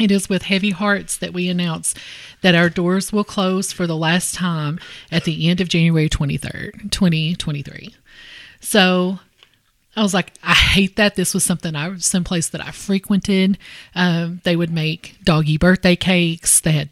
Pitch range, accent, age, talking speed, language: 165-195 Hz, American, 30-49, 175 wpm, English